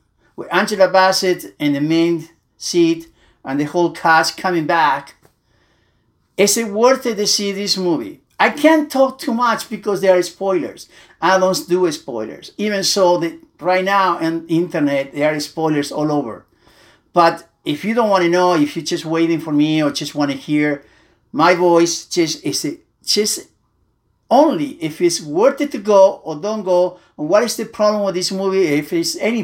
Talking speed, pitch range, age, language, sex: 185 wpm, 165-210 Hz, 50-69, English, male